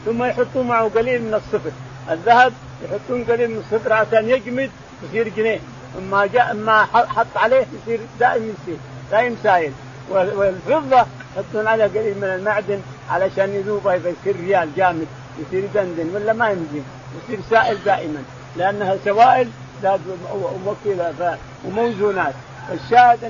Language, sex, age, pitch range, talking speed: Arabic, male, 50-69, 170-225 Hz, 125 wpm